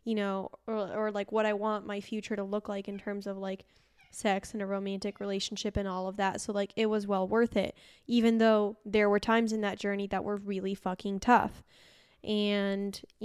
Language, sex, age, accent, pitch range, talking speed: English, female, 10-29, American, 200-240 Hz, 215 wpm